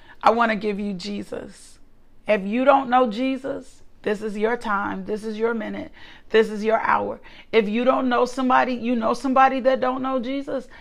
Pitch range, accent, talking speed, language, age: 220-265 Hz, American, 195 wpm, English, 40-59